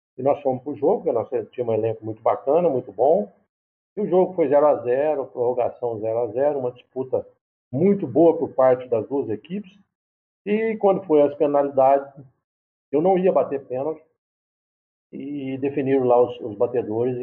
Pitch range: 135-200 Hz